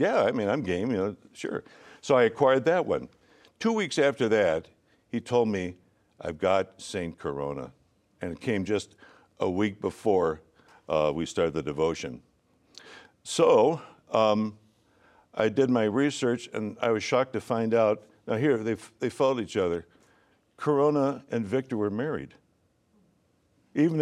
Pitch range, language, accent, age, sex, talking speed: 100-125 Hz, English, American, 60-79, male, 155 wpm